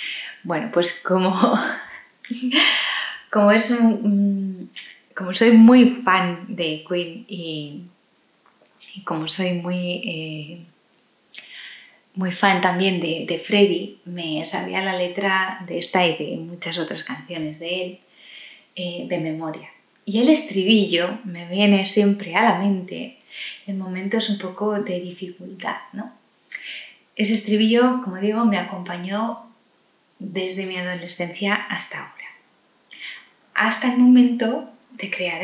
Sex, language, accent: female, Spanish, Spanish